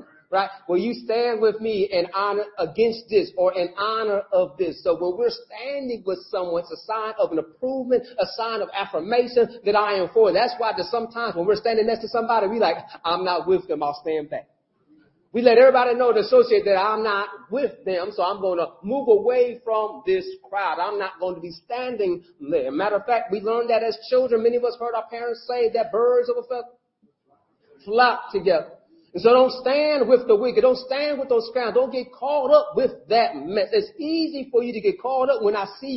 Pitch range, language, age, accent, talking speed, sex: 210-260 Hz, English, 40-59, American, 220 wpm, male